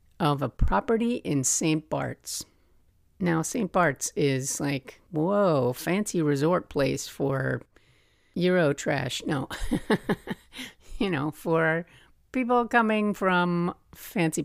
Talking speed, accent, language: 110 wpm, American, English